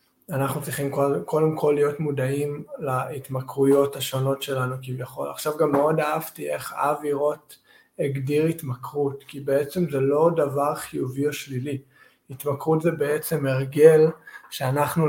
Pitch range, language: 135-150 Hz, Hebrew